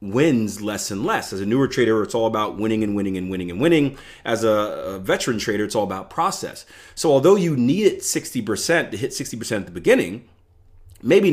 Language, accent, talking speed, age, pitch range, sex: English, American, 205 wpm, 30-49, 105-150 Hz, male